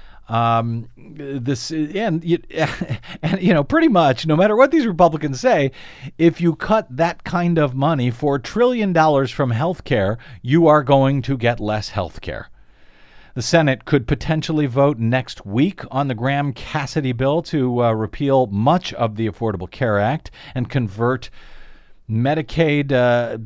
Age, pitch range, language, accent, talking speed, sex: 50-69, 115-160 Hz, English, American, 155 wpm, male